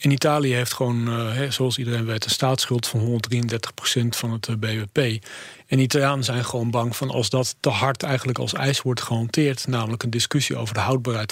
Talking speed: 195 wpm